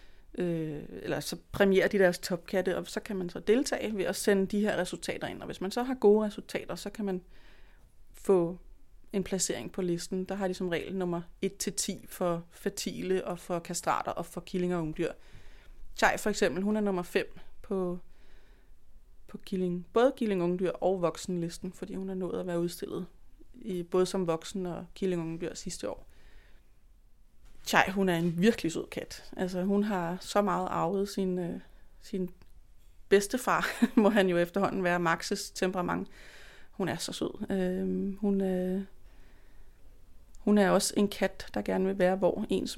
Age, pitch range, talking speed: 30-49, 175-205 Hz, 180 wpm